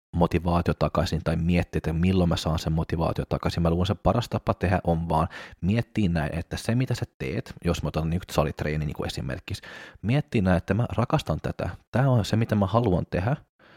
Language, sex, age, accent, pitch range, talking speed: Finnish, male, 30-49, native, 85-105 Hz, 210 wpm